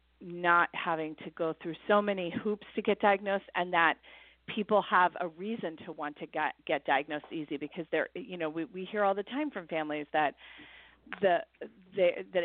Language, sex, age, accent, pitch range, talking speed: English, female, 40-59, American, 155-190 Hz, 180 wpm